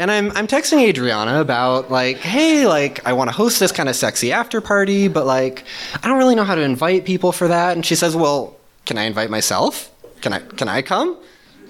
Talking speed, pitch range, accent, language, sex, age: 230 wpm, 125-205 Hz, American, English, male, 20-39